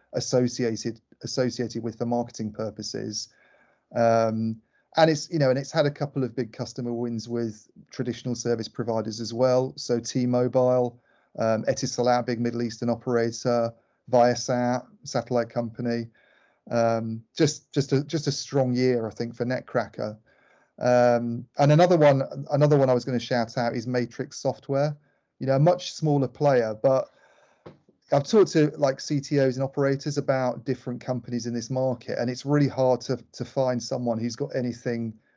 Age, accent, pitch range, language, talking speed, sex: 30-49, British, 120-135 Hz, English, 160 wpm, male